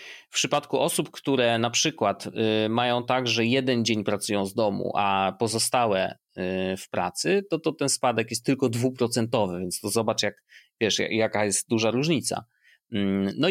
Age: 30-49